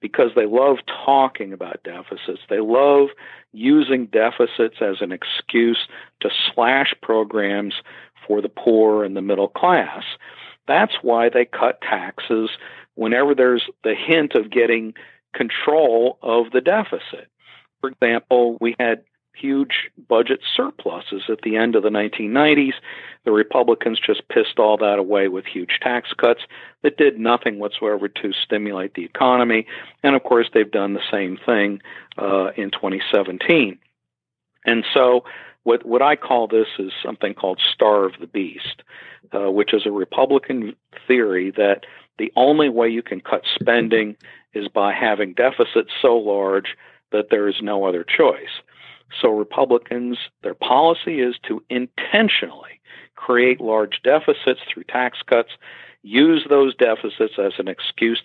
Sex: male